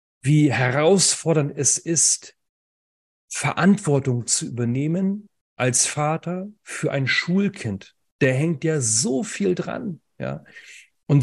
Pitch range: 125-175 Hz